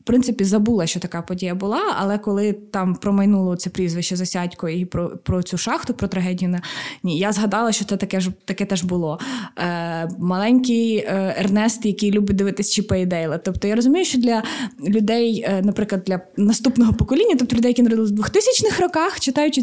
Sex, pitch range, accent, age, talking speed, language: female, 195-235 Hz, native, 20-39, 170 wpm, Ukrainian